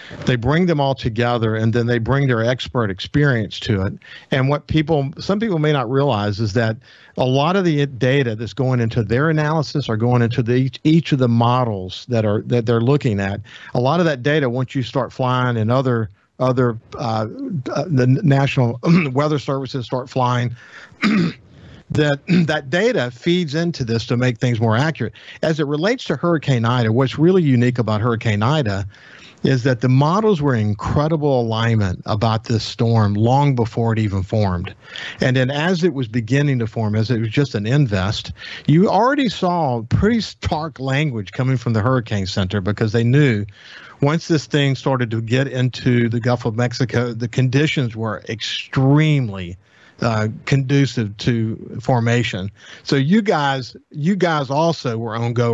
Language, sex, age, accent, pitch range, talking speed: English, male, 50-69, American, 115-145 Hz, 175 wpm